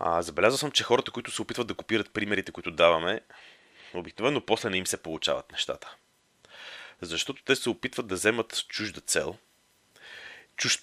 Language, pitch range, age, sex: Bulgarian, 95-120 Hz, 30-49, male